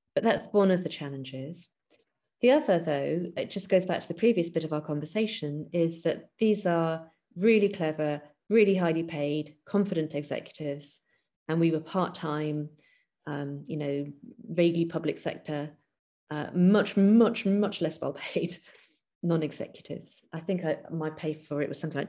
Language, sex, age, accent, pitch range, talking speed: English, female, 30-49, British, 150-185 Hz, 160 wpm